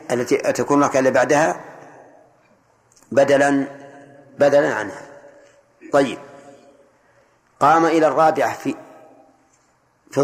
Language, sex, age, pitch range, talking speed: Arabic, male, 40-59, 130-150 Hz, 75 wpm